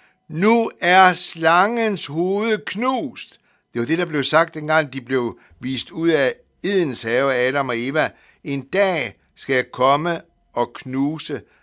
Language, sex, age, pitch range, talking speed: Danish, male, 60-79, 145-200 Hz, 145 wpm